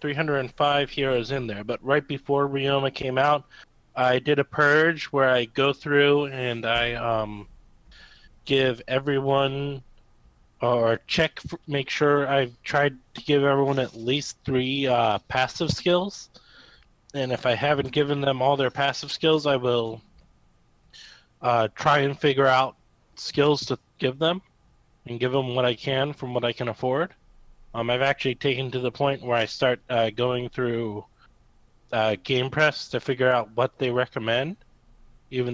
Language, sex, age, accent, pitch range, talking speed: English, male, 20-39, American, 115-140 Hz, 155 wpm